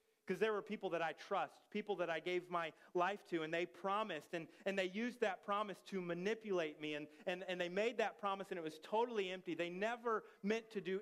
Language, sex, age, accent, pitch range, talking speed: English, male, 30-49, American, 175-215 Hz, 235 wpm